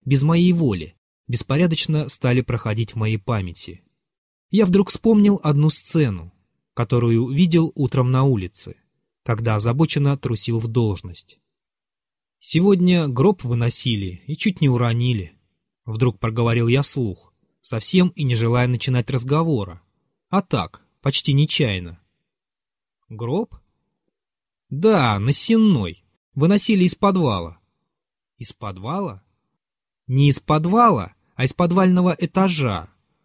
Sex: male